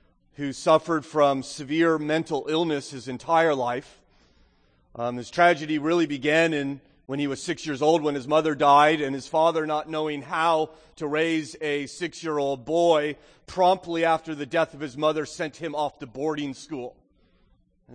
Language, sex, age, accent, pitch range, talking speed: English, male, 30-49, American, 140-165 Hz, 165 wpm